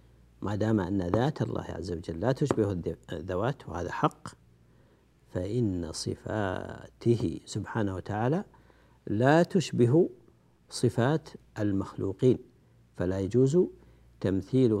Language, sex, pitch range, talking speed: Arabic, male, 95-125 Hz, 95 wpm